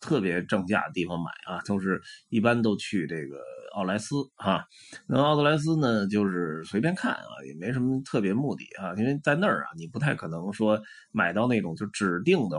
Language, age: Chinese, 20-39